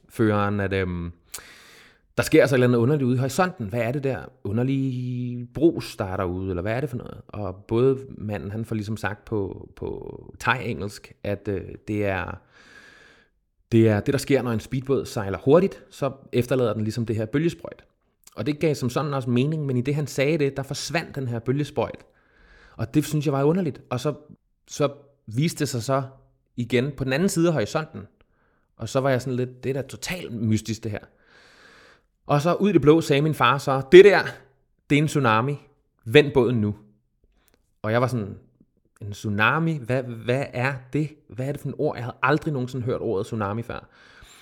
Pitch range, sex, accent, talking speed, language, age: 110-140 Hz, male, native, 205 wpm, Danish, 20-39